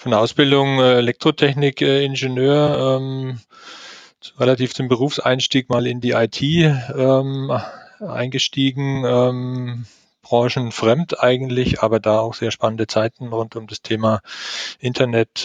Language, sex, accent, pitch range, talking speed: German, male, German, 105-125 Hz, 105 wpm